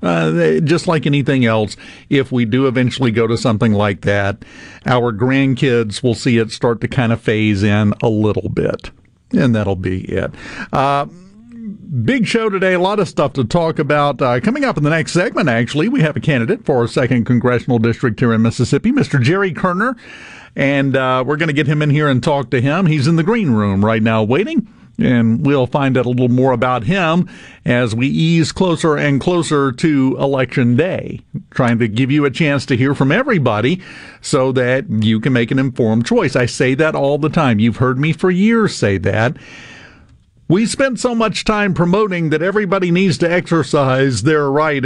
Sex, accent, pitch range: male, American, 120-170 Hz